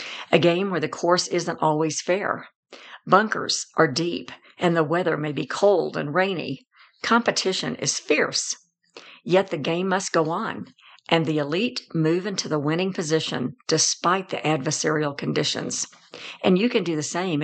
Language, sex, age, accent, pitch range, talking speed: English, female, 60-79, American, 160-195 Hz, 160 wpm